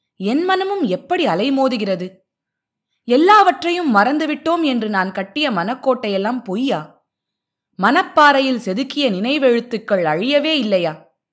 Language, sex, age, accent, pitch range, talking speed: Tamil, female, 20-39, native, 195-290 Hz, 85 wpm